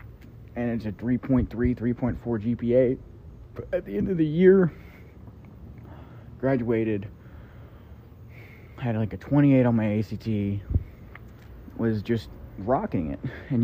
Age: 30-49